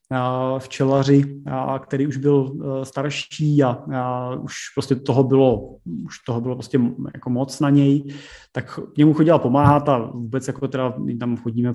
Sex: male